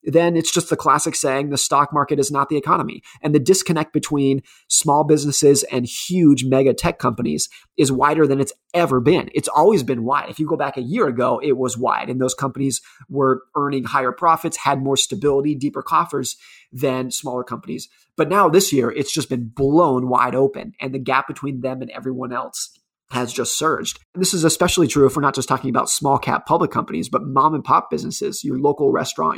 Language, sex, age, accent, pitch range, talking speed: English, male, 30-49, American, 135-155 Hz, 210 wpm